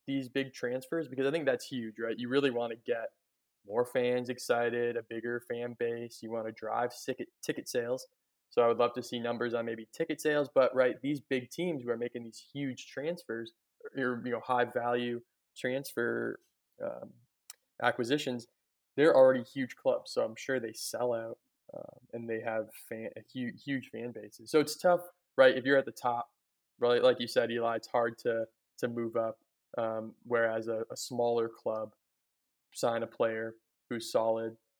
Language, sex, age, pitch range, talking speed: English, male, 20-39, 115-130 Hz, 185 wpm